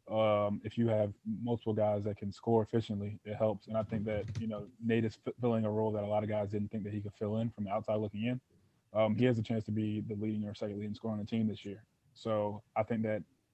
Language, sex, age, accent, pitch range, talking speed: English, male, 20-39, American, 105-115 Hz, 280 wpm